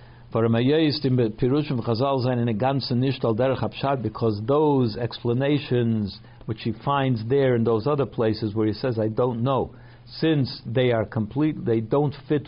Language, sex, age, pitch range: English, male, 60-79, 115-140 Hz